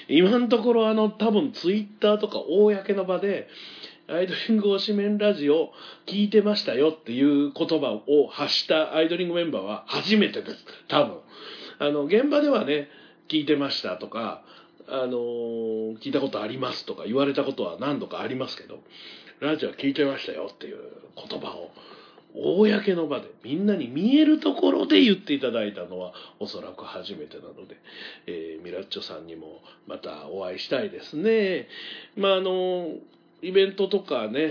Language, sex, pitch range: Japanese, male, 140-220 Hz